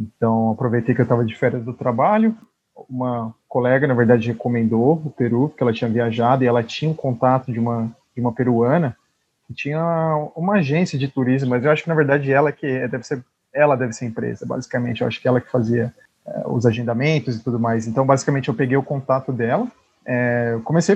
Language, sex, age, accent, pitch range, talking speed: Portuguese, male, 20-39, Brazilian, 120-145 Hz, 215 wpm